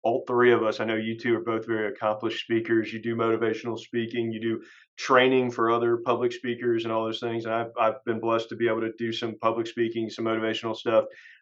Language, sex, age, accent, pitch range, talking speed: English, male, 40-59, American, 115-120 Hz, 230 wpm